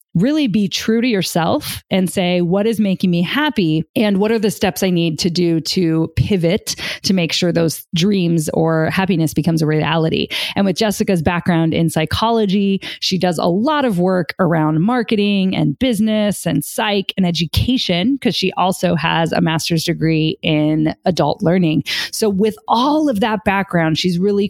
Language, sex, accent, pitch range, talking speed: English, female, American, 165-200 Hz, 175 wpm